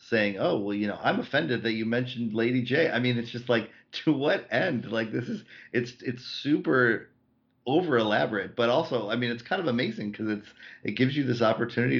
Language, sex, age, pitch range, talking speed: English, male, 40-59, 100-120 Hz, 210 wpm